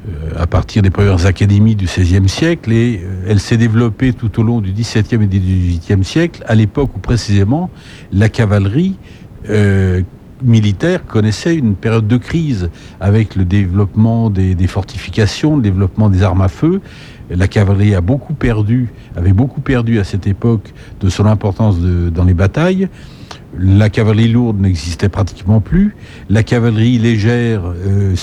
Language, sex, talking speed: French, male, 160 wpm